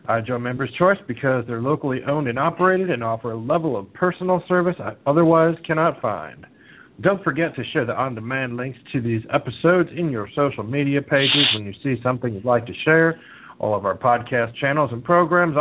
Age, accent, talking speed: 40-59, American, 195 wpm